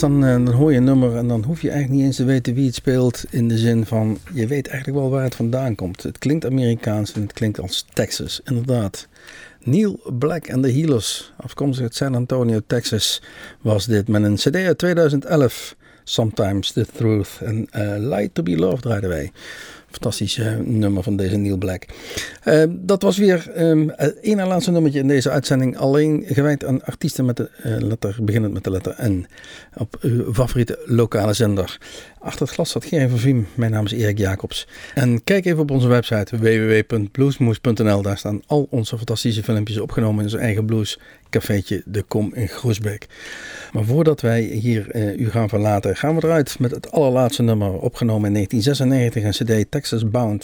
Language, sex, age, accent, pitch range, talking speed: Dutch, male, 50-69, Dutch, 105-135 Hz, 190 wpm